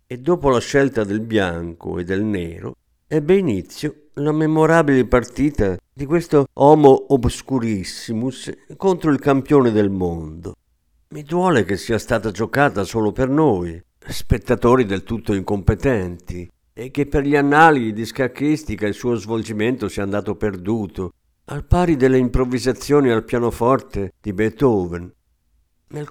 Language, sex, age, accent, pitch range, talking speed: Italian, male, 50-69, native, 95-140 Hz, 135 wpm